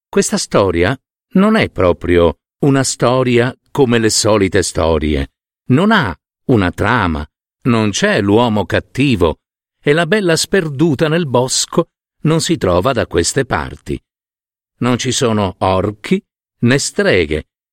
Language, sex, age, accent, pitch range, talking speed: Italian, male, 50-69, native, 100-165 Hz, 125 wpm